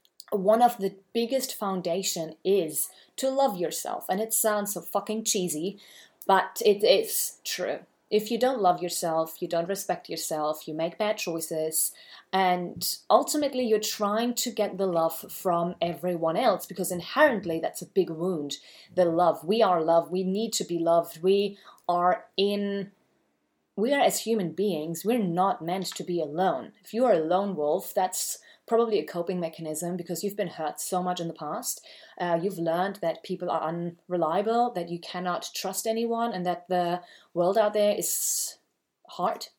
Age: 30-49